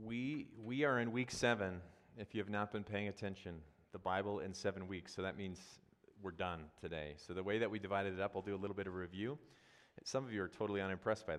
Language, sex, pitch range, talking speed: English, male, 90-105 Hz, 245 wpm